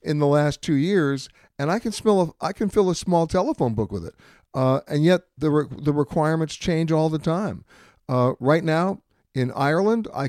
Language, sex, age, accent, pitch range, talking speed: English, male, 60-79, American, 130-165 Hz, 210 wpm